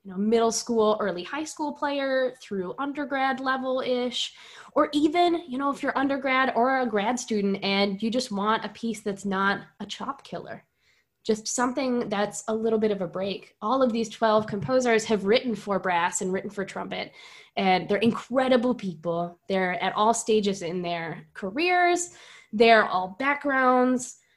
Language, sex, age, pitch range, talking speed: English, female, 10-29, 195-250 Hz, 165 wpm